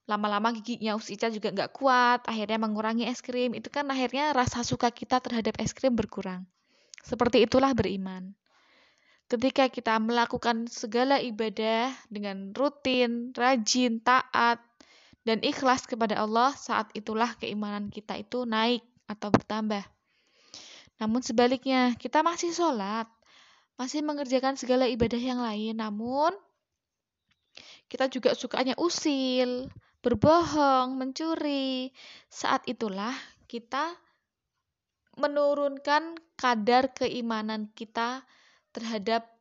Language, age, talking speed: Indonesian, 20-39, 105 wpm